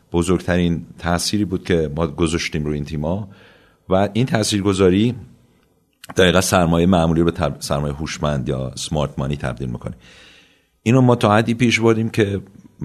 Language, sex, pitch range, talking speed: Persian, male, 75-95 Hz, 155 wpm